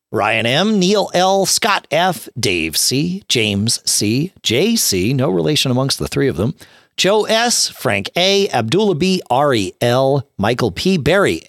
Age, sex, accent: 40-59, male, American